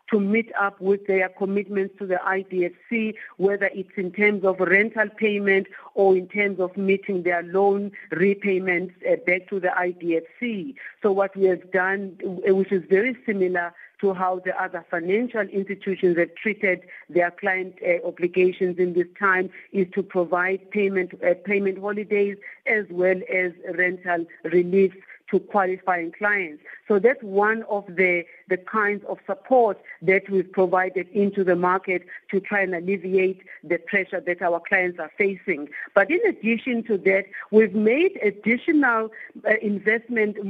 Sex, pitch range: female, 185-220 Hz